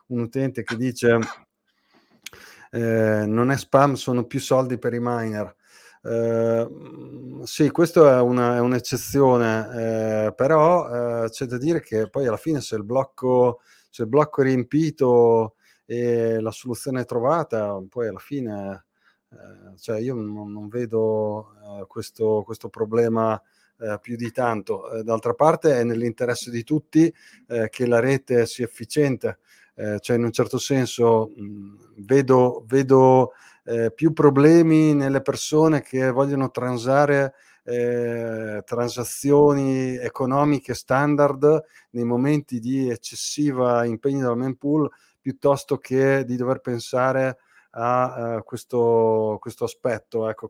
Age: 30-49